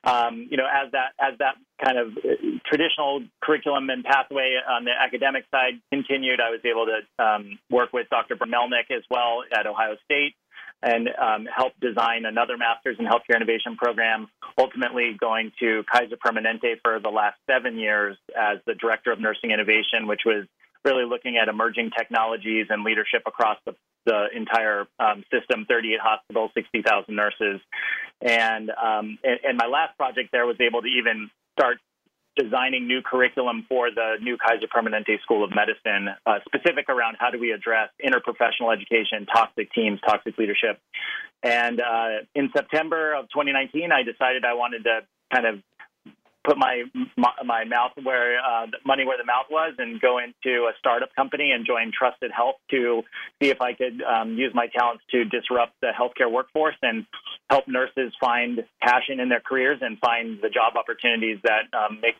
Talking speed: 170 wpm